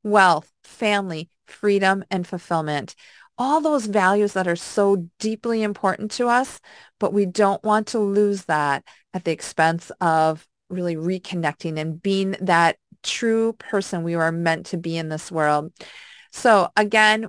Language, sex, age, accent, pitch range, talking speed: English, female, 40-59, American, 180-235 Hz, 150 wpm